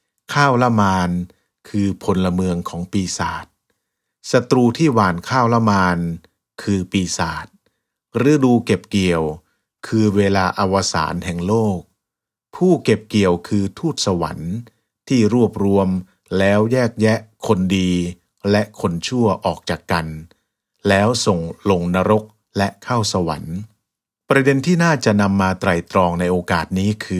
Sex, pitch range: male, 90-110 Hz